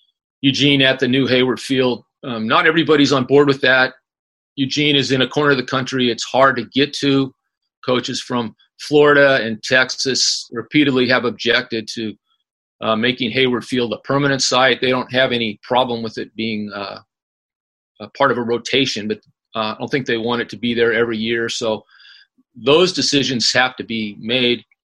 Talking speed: 185 wpm